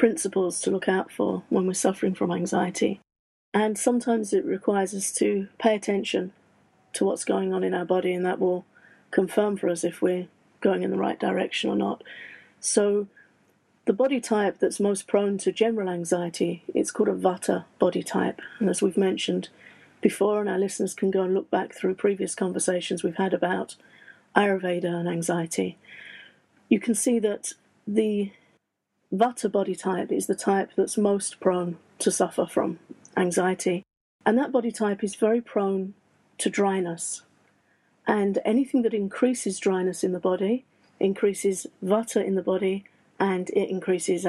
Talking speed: 165 wpm